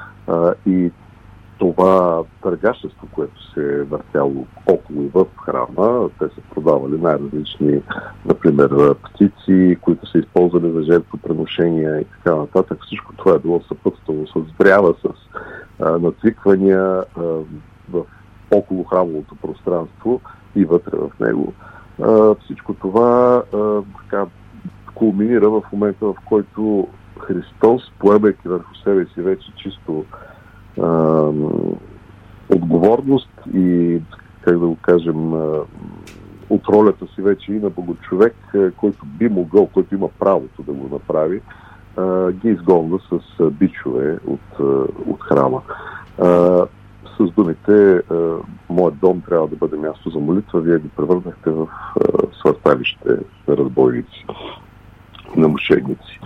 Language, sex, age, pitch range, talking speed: Bulgarian, male, 50-69, 80-100 Hz, 120 wpm